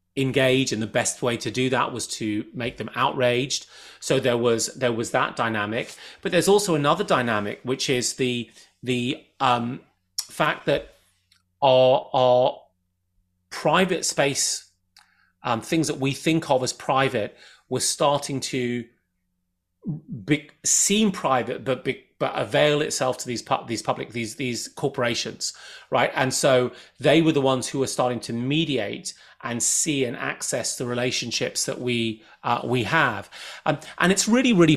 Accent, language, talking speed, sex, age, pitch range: British, English, 155 wpm, male, 30-49, 120-155 Hz